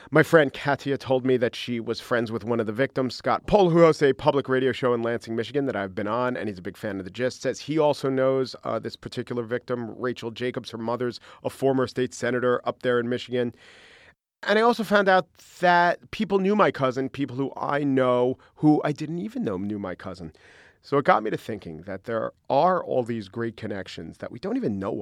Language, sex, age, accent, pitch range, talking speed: English, male, 40-59, American, 110-135 Hz, 235 wpm